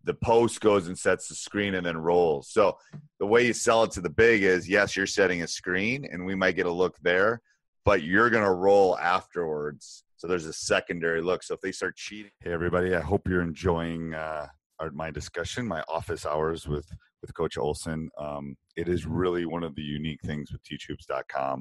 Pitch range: 70-90 Hz